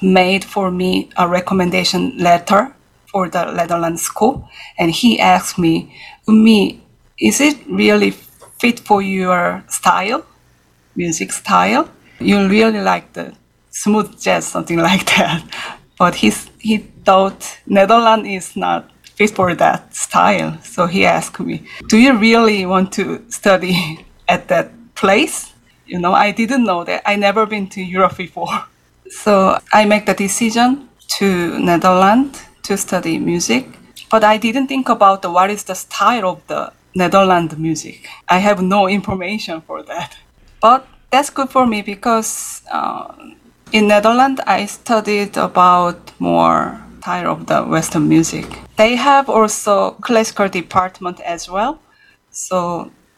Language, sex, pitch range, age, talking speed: English, female, 180-220 Hz, 30-49, 140 wpm